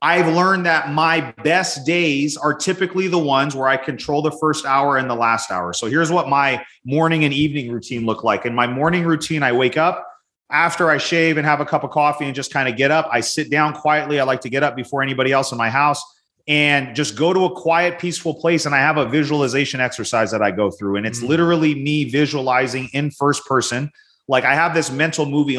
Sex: male